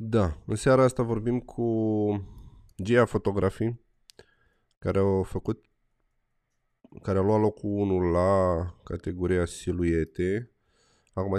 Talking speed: 95 wpm